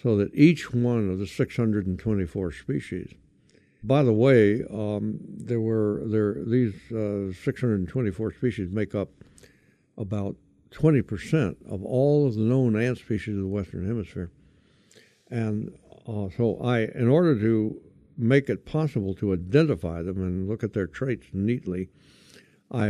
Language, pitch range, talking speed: English, 100-125 Hz, 140 wpm